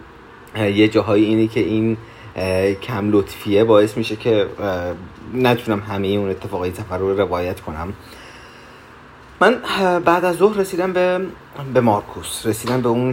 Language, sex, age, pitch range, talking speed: Persian, male, 30-49, 95-120 Hz, 135 wpm